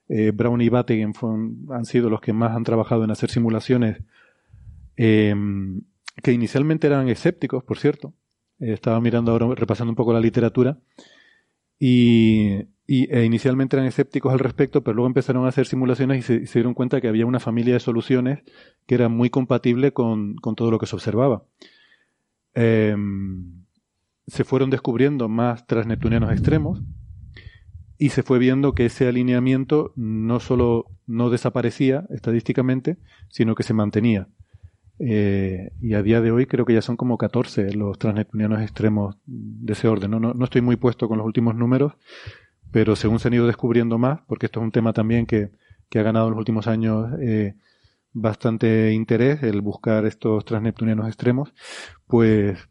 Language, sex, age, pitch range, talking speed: Spanish, male, 30-49, 110-125 Hz, 165 wpm